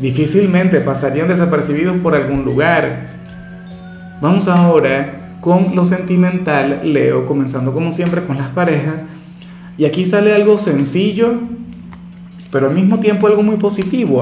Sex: male